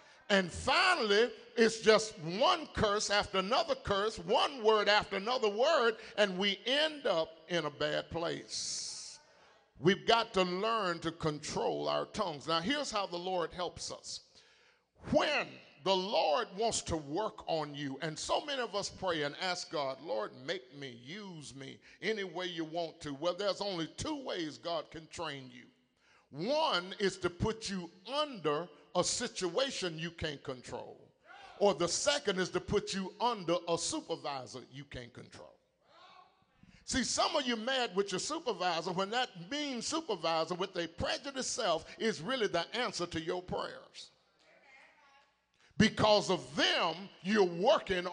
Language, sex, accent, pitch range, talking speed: English, male, American, 165-225 Hz, 155 wpm